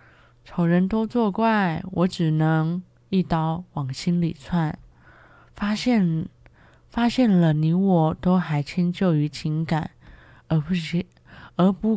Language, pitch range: Chinese, 150-180 Hz